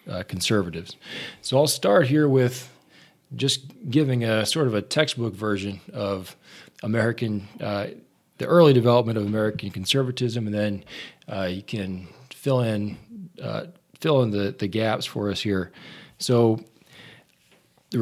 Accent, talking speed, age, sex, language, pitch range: American, 145 wpm, 40-59, male, English, 100-125 Hz